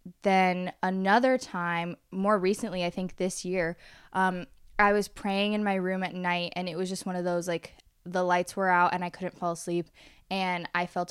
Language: English